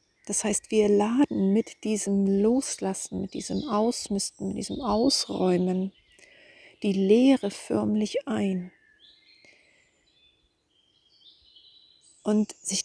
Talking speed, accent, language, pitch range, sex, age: 90 wpm, German, German, 190-230 Hz, female, 40-59